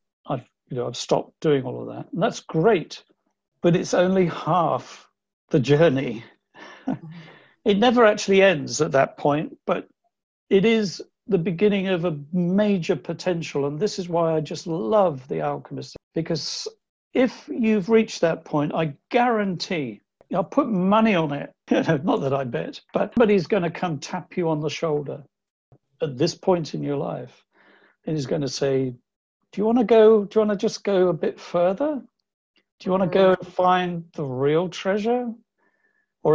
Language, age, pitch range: English, 60-79, 145-210 Hz